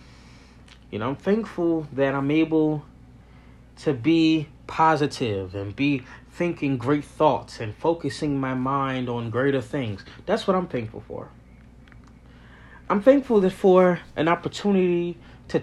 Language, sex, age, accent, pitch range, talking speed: English, male, 30-49, American, 125-155 Hz, 125 wpm